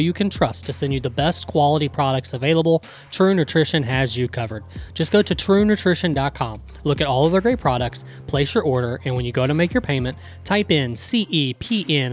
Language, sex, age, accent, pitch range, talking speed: English, male, 20-39, American, 130-165 Hz, 205 wpm